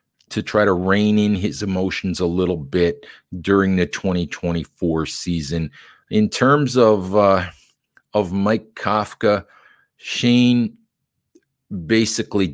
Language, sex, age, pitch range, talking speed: English, male, 40-59, 90-105 Hz, 110 wpm